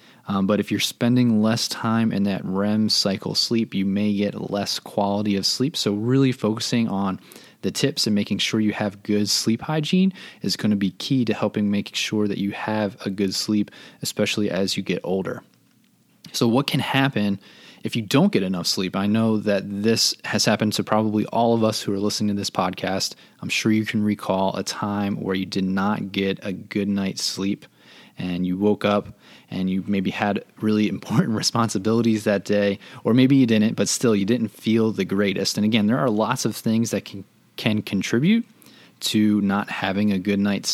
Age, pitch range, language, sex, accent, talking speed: 20-39, 100-115 Hz, English, male, American, 200 wpm